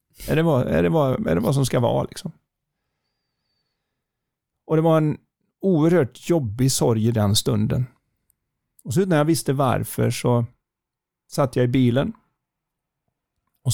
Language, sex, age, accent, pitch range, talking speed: Swedish, male, 30-49, native, 120-150 Hz, 155 wpm